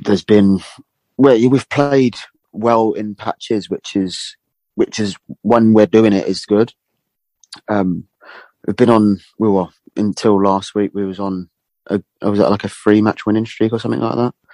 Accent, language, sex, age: British, English, male, 30-49